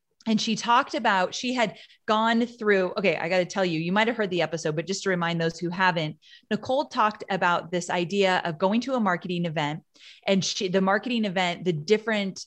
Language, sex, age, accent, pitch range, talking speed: English, female, 20-39, American, 175-220 Hz, 210 wpm